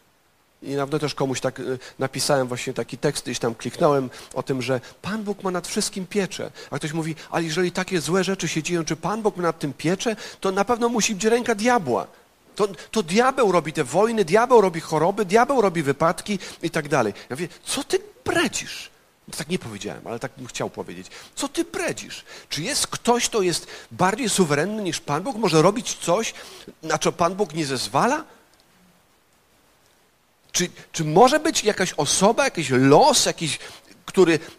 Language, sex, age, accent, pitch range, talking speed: Polish, male, 50-69, native, 150-220 Hz, 185 wpm